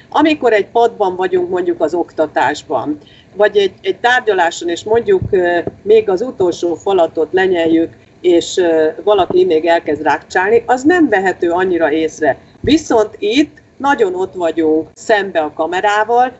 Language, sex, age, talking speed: Hungarian, female, 40-59, 130 wpm